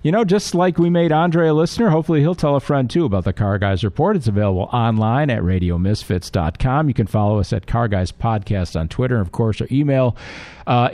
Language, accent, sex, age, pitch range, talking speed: English, American, male, 50-69, 100-130 Hz, 225 wpm